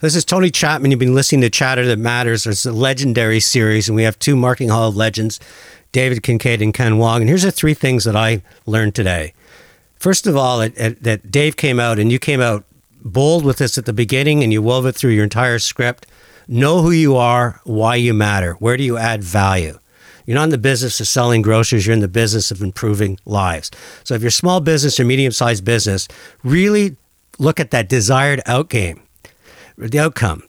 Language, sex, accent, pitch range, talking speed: English, male, American, 110-145 Hz, 210 wpm